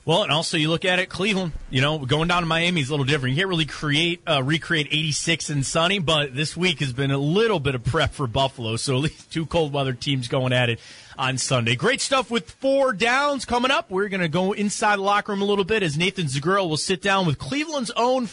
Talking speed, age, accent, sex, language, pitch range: 250 wpm, 30-49, American, male, English, 140-195 Hz